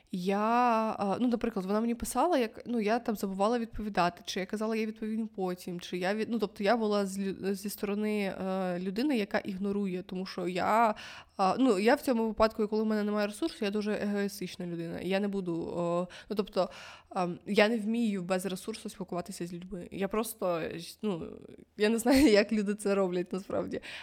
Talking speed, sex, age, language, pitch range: 175 wpm, female, 20-39, Ukrainian, 190-220 Hz